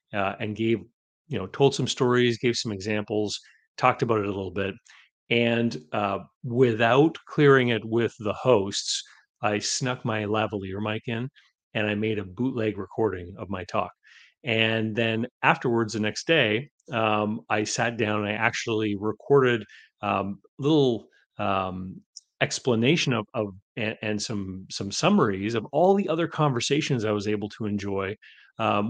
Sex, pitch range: male, 105-125 Hz